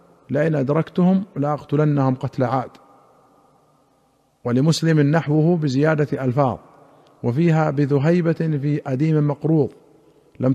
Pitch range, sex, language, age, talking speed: 135-160 Hz, male, Arabic, 50-69, 90 wpm